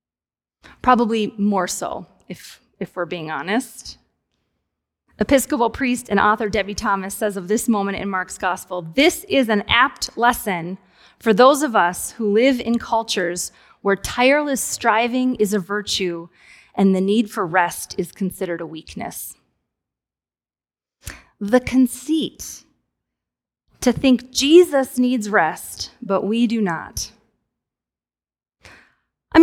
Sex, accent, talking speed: female, American, 125 wpm